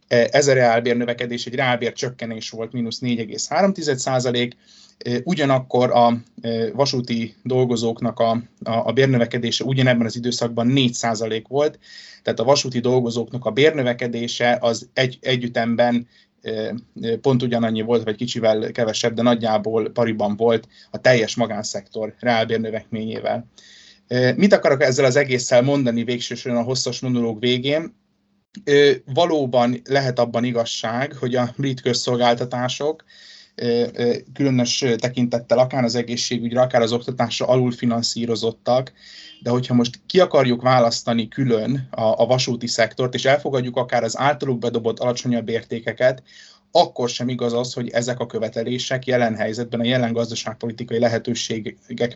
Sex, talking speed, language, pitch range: male, 125 wpm, Hungarian, 115-130 Hz